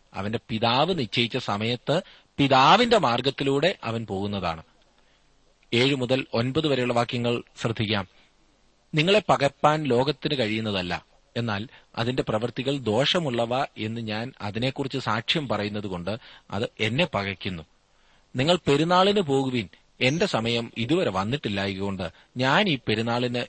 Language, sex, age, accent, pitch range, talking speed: Malayalam, male, 30-49, native, 100-140 Hz, 105 wpm